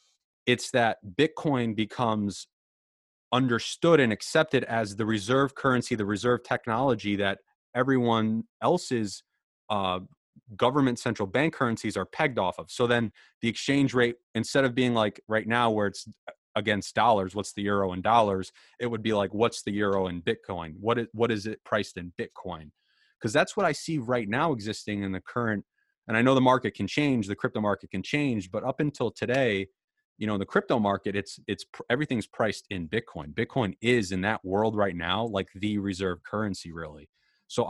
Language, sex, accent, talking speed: English, male, American, 185 wpm